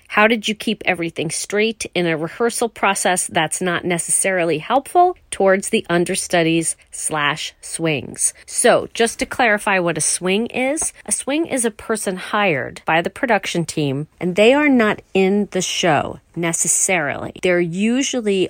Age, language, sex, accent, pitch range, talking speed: 40-59, English, female, American, 165-210 Hz, 150 wpm